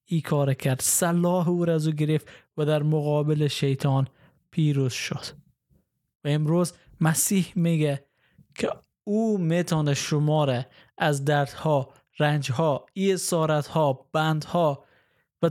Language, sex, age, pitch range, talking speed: Persian, male, 20-39, 140-170 Hz, 100 wpm